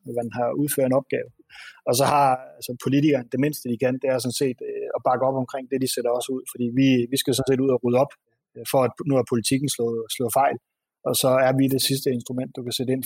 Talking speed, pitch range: 260 wpm, 125-140 Hz